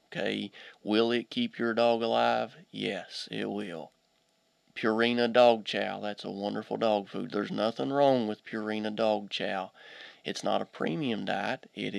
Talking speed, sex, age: 155 wpm, male, 30-49